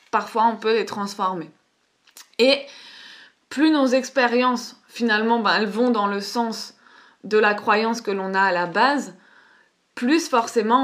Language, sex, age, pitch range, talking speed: French, female, 20-39, 220-270 Hz, 150 wpm